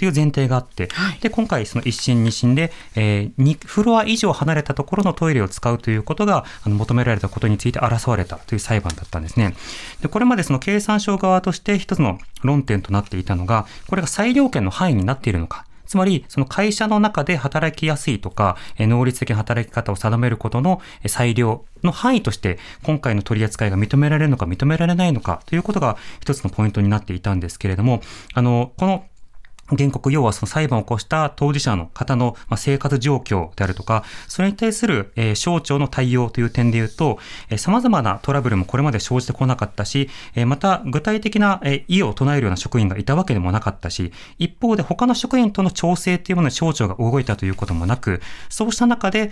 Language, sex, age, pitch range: Japanese, male, 30-49, 110-170 Hz